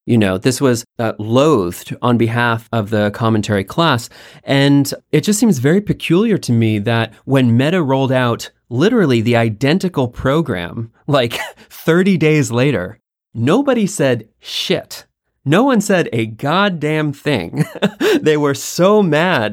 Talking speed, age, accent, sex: 140 wpm, 30-49, American, male